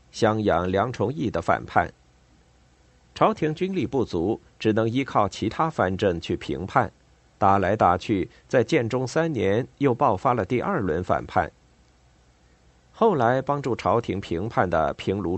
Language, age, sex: Chinese, 50-69, male